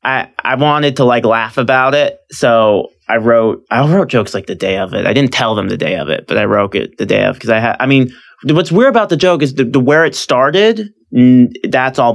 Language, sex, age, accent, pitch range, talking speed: English, male, 20-39, American, 110-155 Hz, 260 wpm